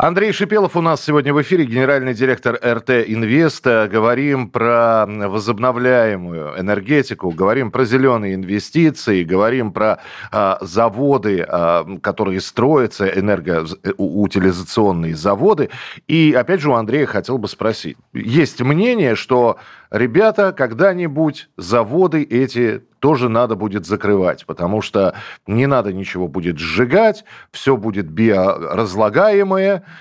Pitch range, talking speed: 95-135 Hz, 110 wpm